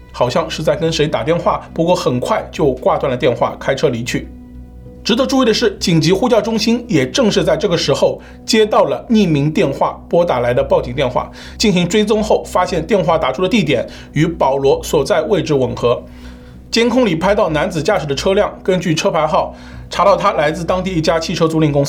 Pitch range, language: 140-205 Hz, Chinese